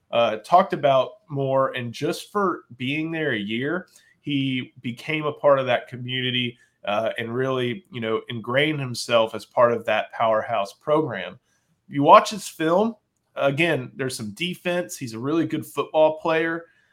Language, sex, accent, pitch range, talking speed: English, male, American, 125-155 Hz, 160 wpm